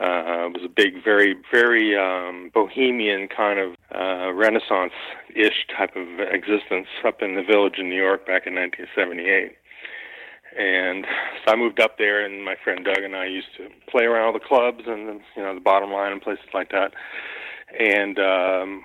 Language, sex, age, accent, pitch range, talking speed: English, male, 40-59, American, 95-135 Hz, 180 wpm